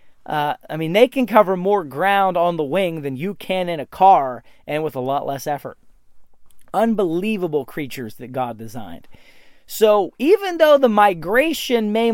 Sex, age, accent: male, 30-49, American